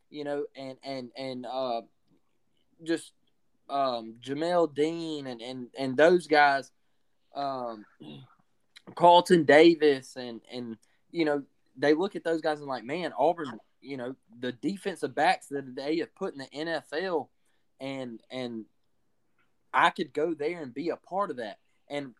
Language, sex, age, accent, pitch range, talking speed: English, male, 20-39, American, 125-160 Hz, 150 wpm